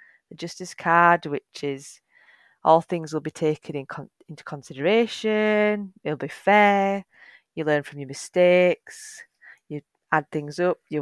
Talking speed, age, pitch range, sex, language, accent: 140 wpm, 30-49, 150-180 Hz, female, English, British